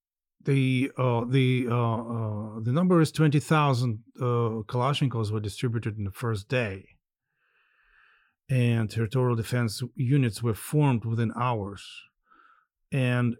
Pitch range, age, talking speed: 105-135 Hz, 40-59, 120 wpm